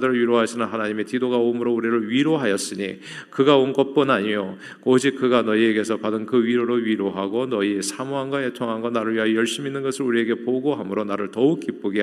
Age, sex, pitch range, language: 40-59, male, 110-135 Hz, Korean